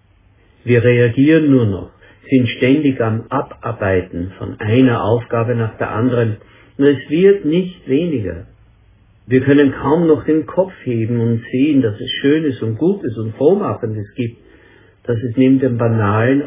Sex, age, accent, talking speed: male, 60-79, German, 150 wpm